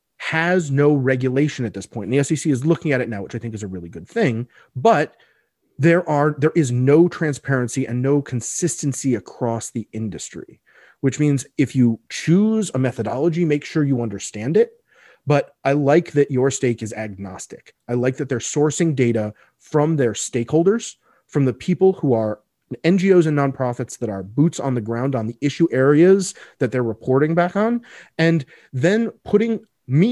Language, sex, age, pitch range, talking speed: English, male, 30-49, 120-165 Hz, 180 wpm